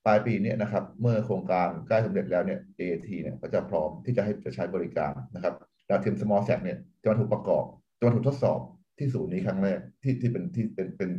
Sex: male